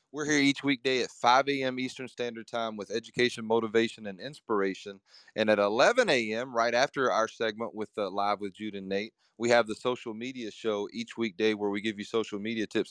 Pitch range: 105-125 Hz